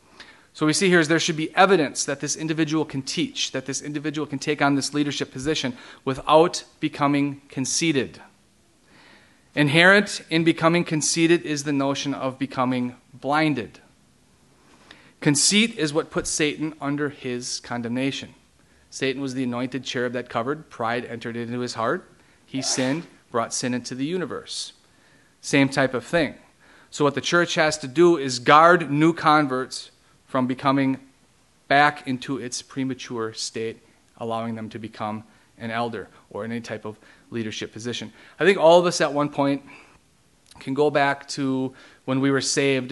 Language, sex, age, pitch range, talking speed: English, male, 40-59, 125-150 Hz, 160 wpm